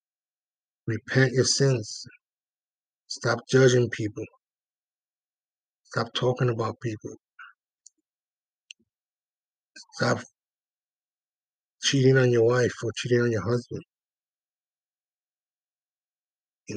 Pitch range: 110-130 Hz